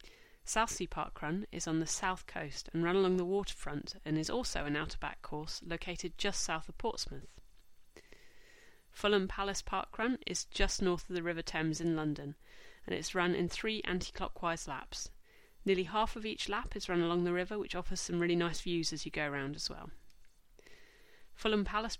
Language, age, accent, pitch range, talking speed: English, 30-49, British, 165-210 Hz, 190 wpm